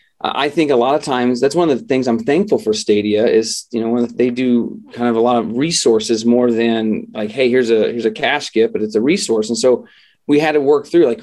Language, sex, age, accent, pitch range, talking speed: English, male, 40-59, American, 120-155 Hz, 260 wpm